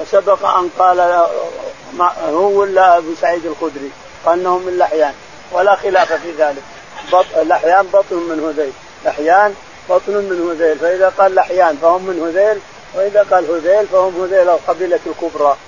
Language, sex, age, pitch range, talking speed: Arabic, male, 50-69, 170-205 Hz, 150 wpm